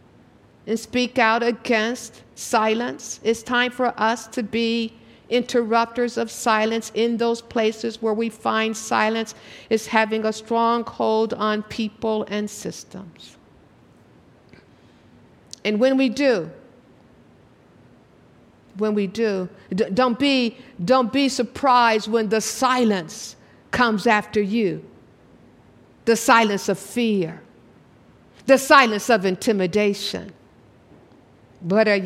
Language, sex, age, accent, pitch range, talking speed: English, female, 50-69, American, 195-235 Hz, 105 wpm